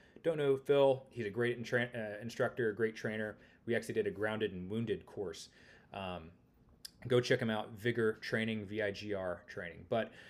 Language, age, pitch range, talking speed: English, 30-49, 105-130 Hz, 170 wpm